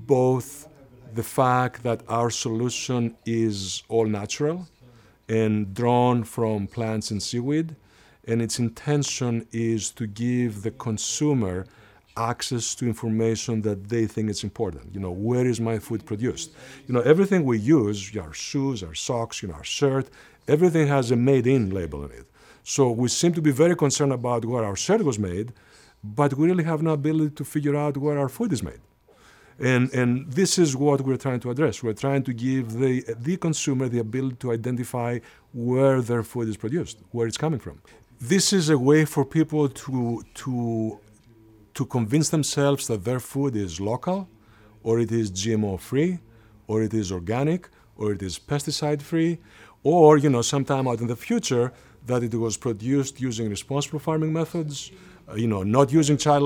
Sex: male